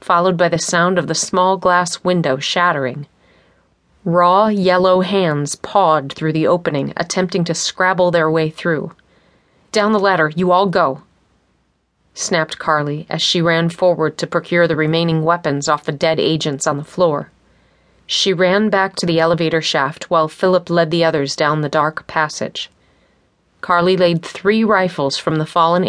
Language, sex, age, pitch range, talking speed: English, female, 30-49, 155-185 Hz, 160 wpm